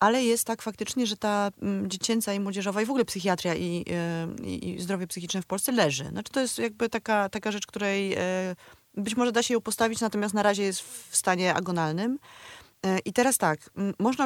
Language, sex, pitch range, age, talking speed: Polish, female, 170-210 Hz, 30-49, 185 wpm